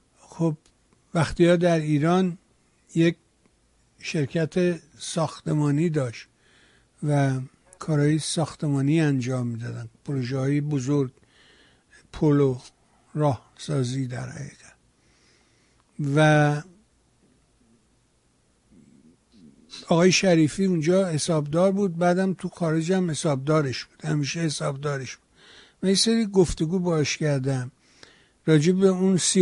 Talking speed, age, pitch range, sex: 90 wpm, 60-79, 140-170 Hz, male